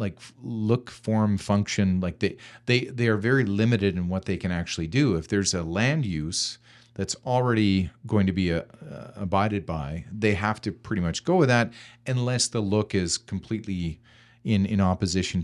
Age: 40-59